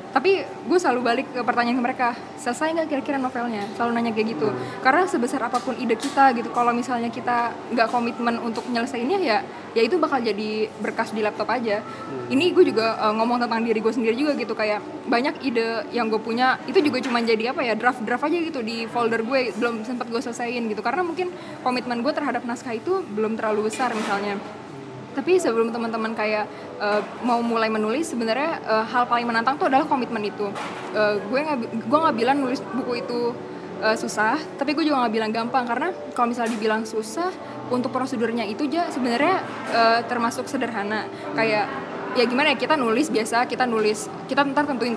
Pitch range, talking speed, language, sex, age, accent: 220-260 Hz, 185 wpm, Indonesian, female, 10-29, native